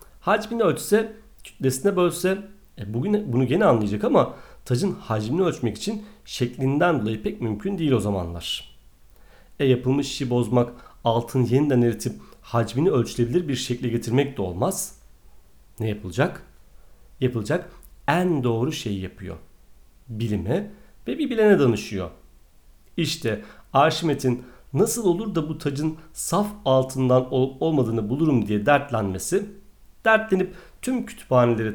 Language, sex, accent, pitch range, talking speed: Turkish, male, native, 110-165 Hz, 120 wpm